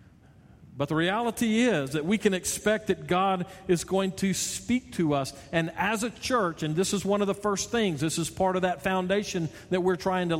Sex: male